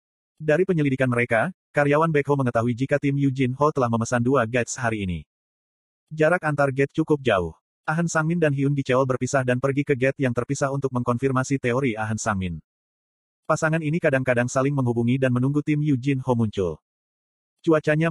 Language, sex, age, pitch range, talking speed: Indonesian, male, 30-49, 120-150 Hz, 165 wpm